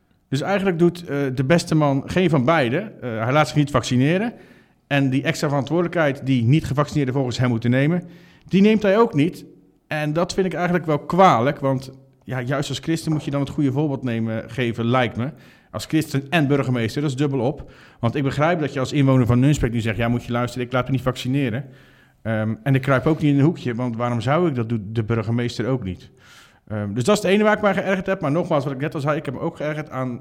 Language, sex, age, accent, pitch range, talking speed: Dutch, male, 50-69, Dutch, 120-150 Hz, 245 wpm